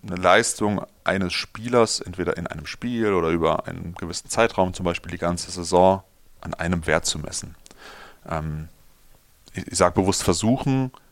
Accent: German